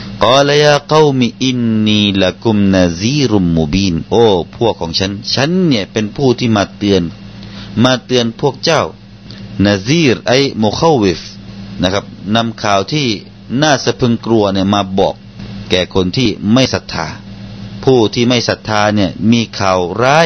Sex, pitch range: male, 100-120 Hz